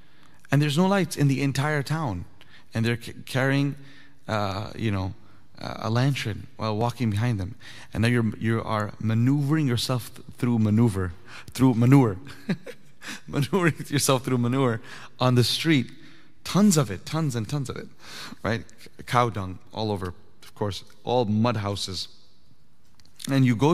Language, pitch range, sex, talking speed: English, 105-135 Hz, male, 150 wpm